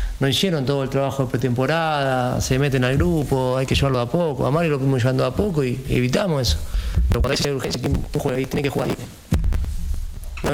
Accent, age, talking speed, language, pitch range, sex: Argentinian, 40-59, 220 wpm, Spanish, 90-150 Hz, male